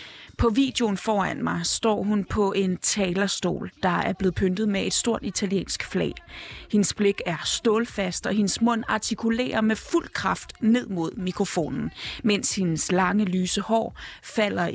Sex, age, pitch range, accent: female, 30-49, 190-230 Hz, native